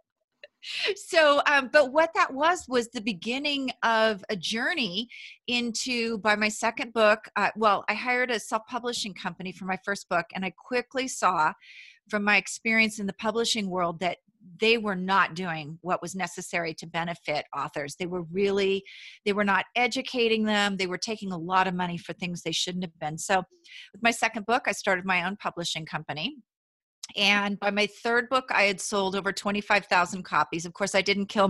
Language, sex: English, female